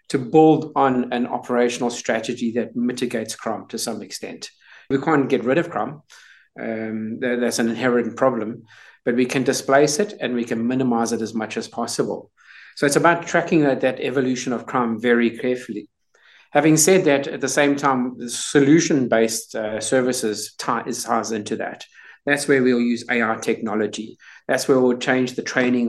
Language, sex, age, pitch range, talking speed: English, male, 50-69, 115-135 Hz, 180 wpm